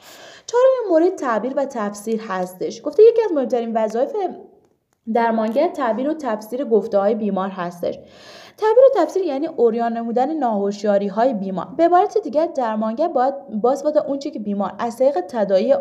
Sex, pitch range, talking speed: female, 195-275 Hz, 160 wpm